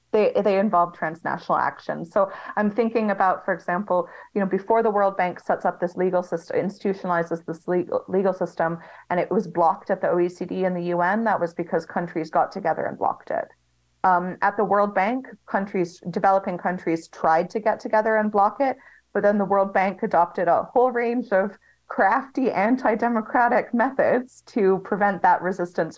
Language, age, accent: English, 30-49, American